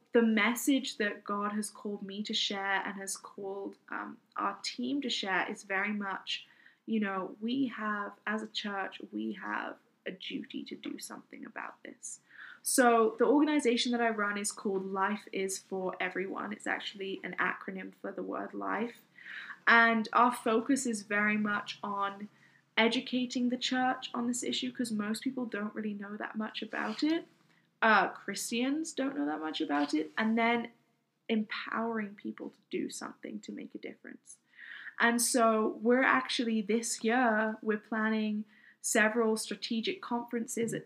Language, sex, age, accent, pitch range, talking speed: English, female, 10-29, British, 205-235 Hz, 160 wpm